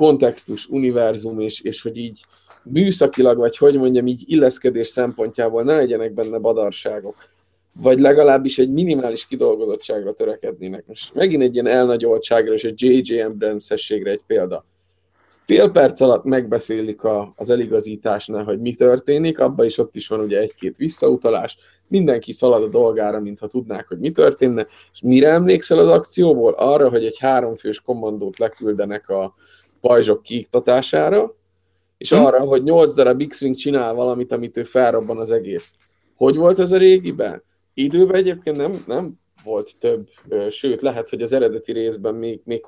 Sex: male